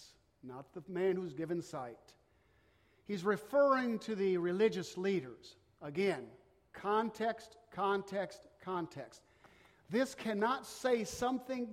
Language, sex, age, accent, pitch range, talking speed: English, male, 50-69, American, 180-245 Hz, 100 wpm